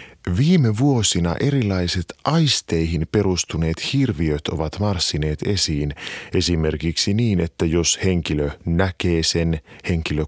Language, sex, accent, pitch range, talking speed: Finnish, male, native, 85-110 Hz, 100 wpm